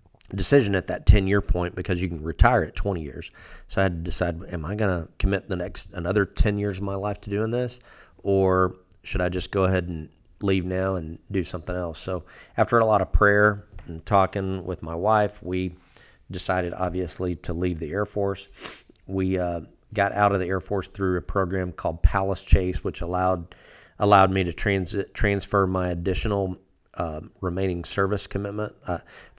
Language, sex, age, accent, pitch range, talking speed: English, male, 40-59, American, 90-100 Hz, 190 wpm